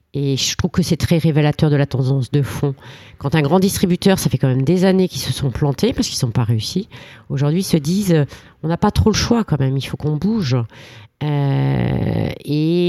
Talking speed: 235 wpm